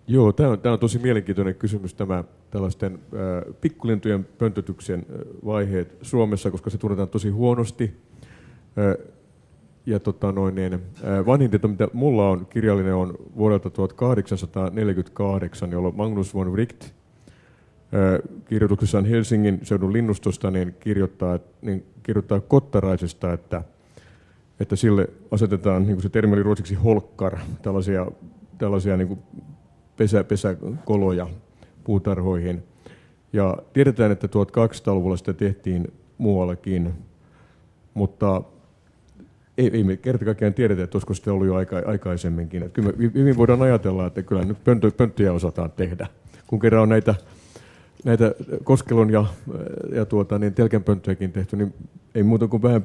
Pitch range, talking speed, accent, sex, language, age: 95-115 Hz, 125 wpm, native, male, Finnish, 30-49